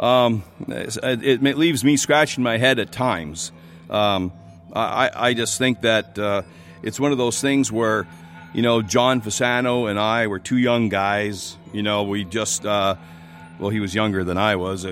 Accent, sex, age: American, male, 40-59